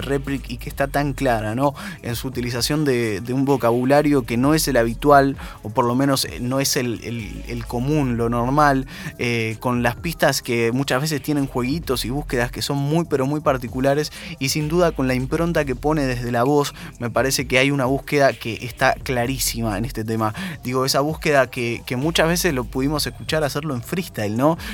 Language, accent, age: Spanish, Argentinian, 20-39